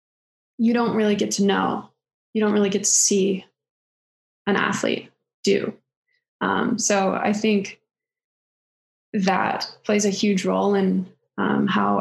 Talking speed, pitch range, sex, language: 135 wpm, 185-210 Hz, female, English